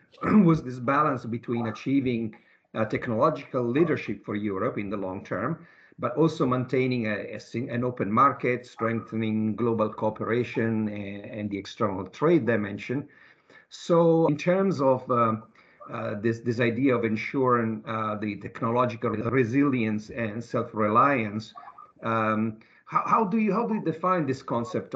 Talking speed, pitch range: 145 wpm, 110-130 Hz